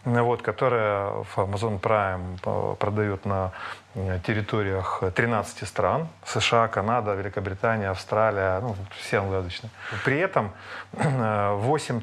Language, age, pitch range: Russian, 30-49, 100-120 Hz